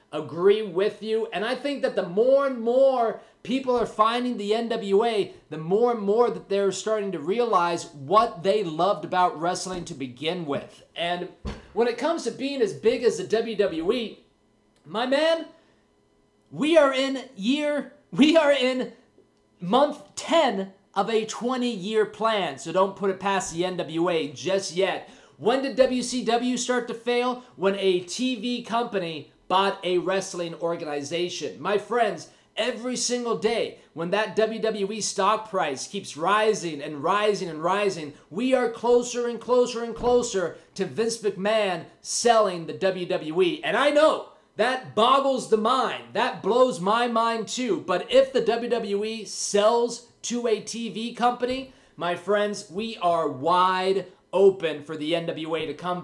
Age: 30-49